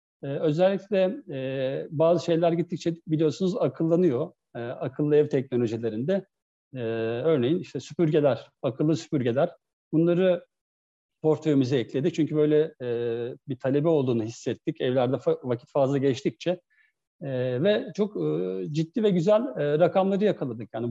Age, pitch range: 60-79, 130-175 Hz